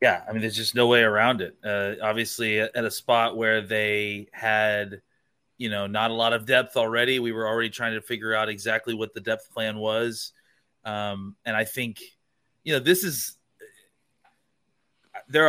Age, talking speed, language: 30-49, 180 wpm, English